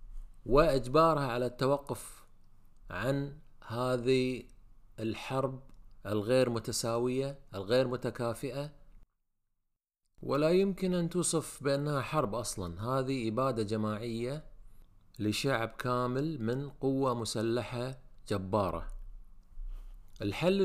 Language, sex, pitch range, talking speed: Arabic, male, 105-145 Hz, 80 wpm